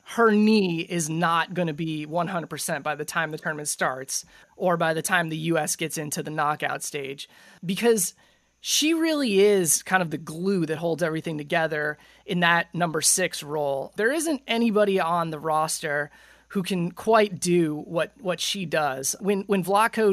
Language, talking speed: English, 175 wpm